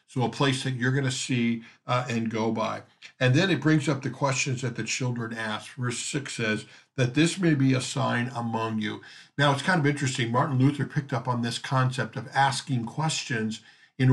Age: 50-69